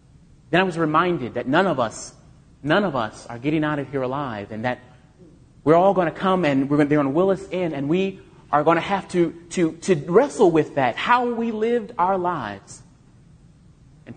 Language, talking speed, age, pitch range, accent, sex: English, 210 wpm, 30-49, 130-175 Hz, American, male